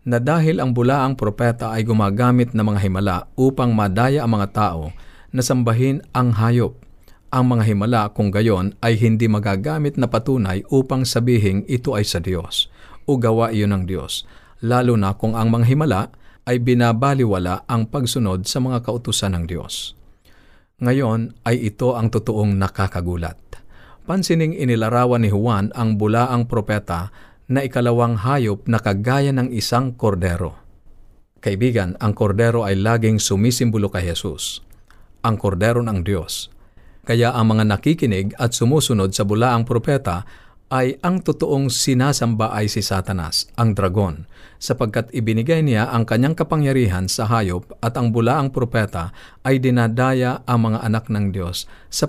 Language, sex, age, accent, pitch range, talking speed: Filipino, male, 50-69, native, 100-125 Hz, 145 wpm